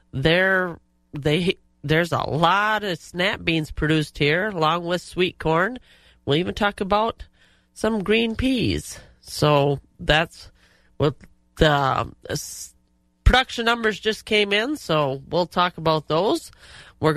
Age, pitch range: 40-59, 145-195 Hz